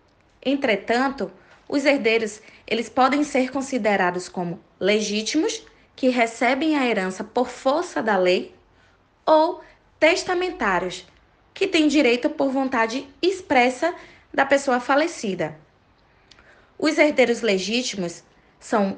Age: 20-39